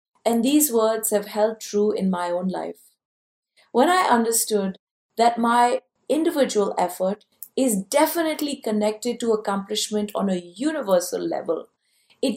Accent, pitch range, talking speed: Indian, 195-255 Hz, 130 wpm